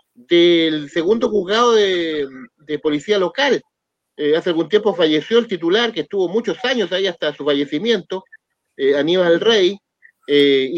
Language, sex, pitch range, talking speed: Spanish, male, 150-215 Hz, 145 wpm